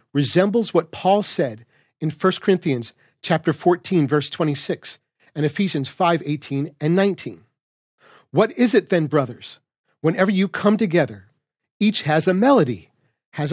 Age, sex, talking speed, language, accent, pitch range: 40-59, male, 135 wpm, English, American, 140-195 Hz